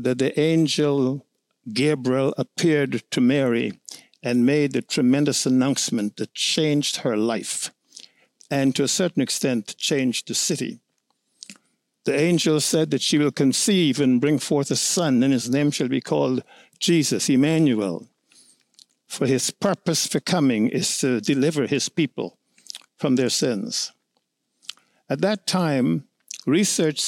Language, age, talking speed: English, 60-79, 135 wpm